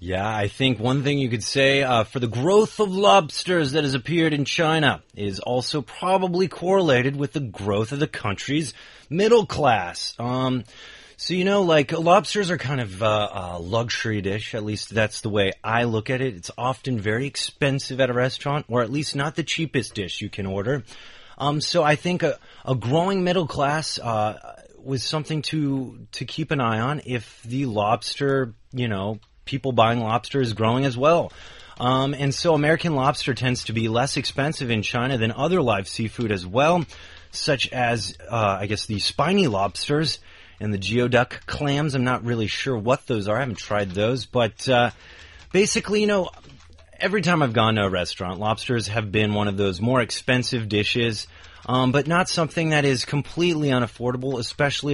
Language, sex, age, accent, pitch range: Chinese, male, 30-49, American, 105-145 Hz